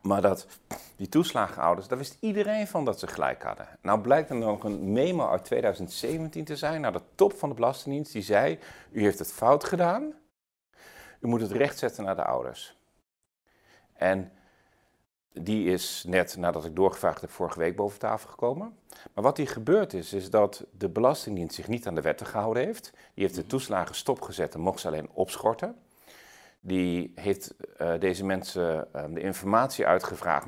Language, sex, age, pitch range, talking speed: Dutch, male, 40-59, 95-140 Hz, 180 wpm